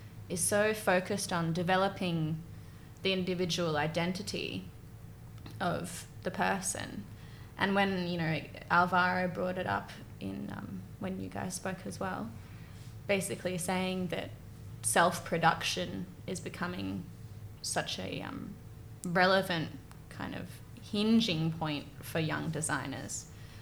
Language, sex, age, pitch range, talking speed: English, female, 20-39, 110-185 Hz, 110 wpm